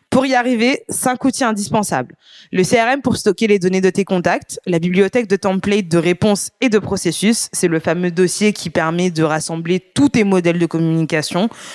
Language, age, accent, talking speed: French, 20-39, French, 190 wpm